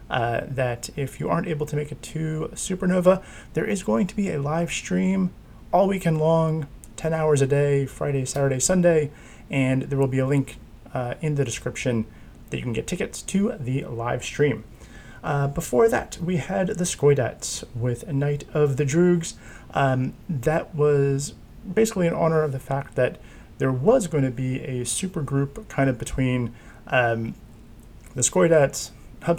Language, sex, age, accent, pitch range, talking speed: English, male, 30-49, American, 115-150 Hz, 175 wpm